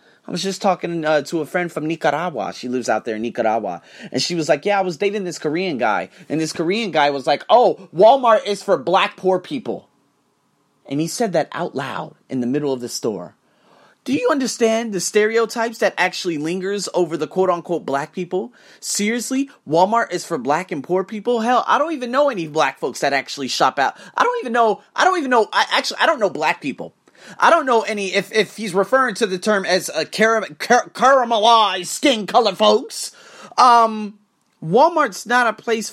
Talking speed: 205 wpm